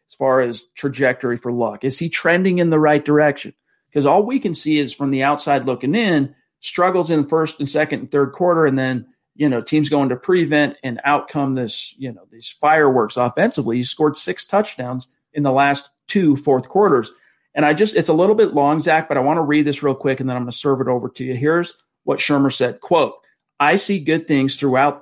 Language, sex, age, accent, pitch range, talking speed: English, male, 40-59, American, 135-165 Hz, 230 wpm